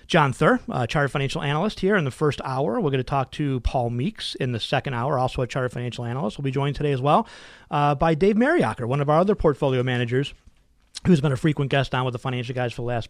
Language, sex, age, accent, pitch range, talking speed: English, male, 30-49, American, 130-170 Hz, 255 wpm